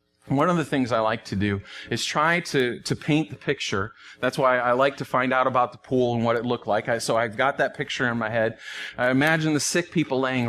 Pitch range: 105-160 Hz